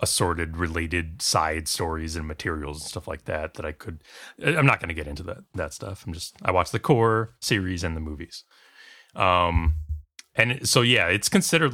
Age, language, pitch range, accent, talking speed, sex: 30-49, English, 85-115 Hz, American, 190 wpm, male